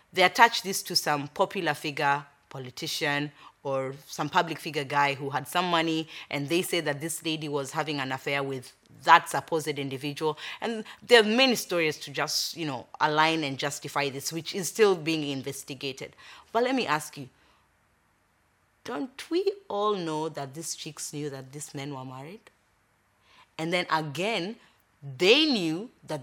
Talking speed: 165 wpm